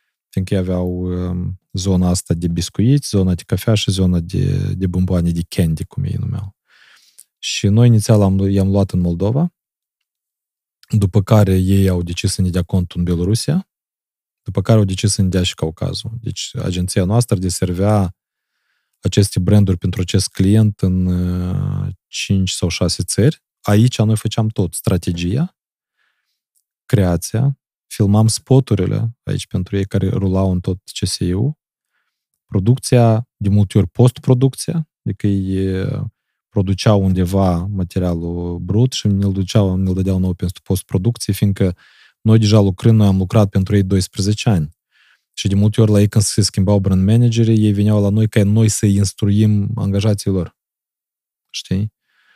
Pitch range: 95-110 Hz